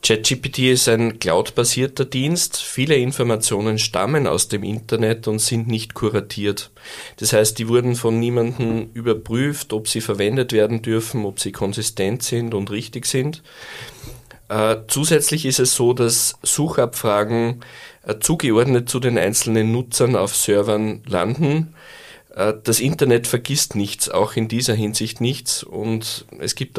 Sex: male